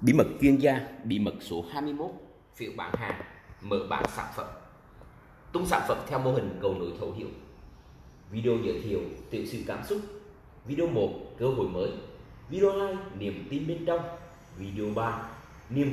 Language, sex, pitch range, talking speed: Vietnamese, male, 100-155 Hz, 175 wpm